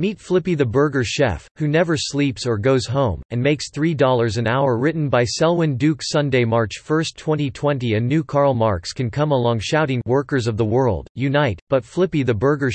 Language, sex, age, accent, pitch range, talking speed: English, male, 40-59, American, 115-150 Hz, 195 wpm